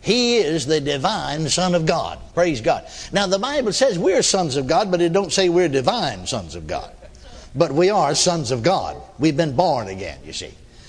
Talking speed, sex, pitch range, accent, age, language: 210 wpm, male, 150-205 Hz, American, 60-79, English